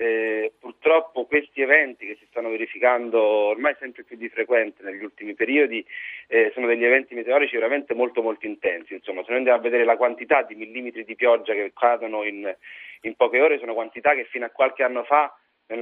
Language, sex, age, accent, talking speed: Italian, male, 40-59, native, 195 wpm